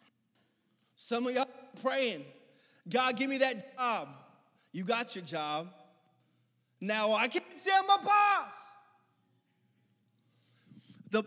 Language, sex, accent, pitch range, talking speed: English, male, American, 170-230 Hz, 110 wpm